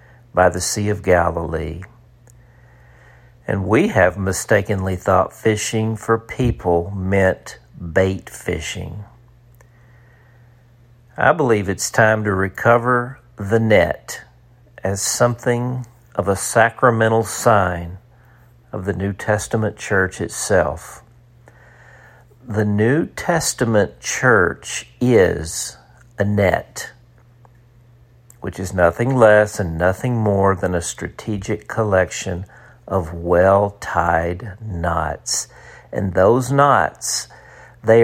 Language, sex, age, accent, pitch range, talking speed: English, male, 50-69, American, 95-120 Hz, 95 wpm